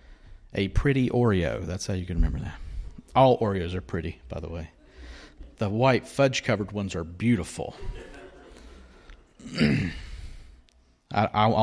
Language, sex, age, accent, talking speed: English, male, 40-59, American, 120 wpm